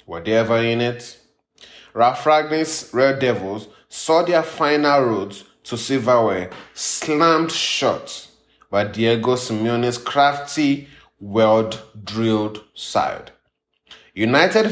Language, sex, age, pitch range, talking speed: English, male, 30-49, 110-140 Hz, 95 wpm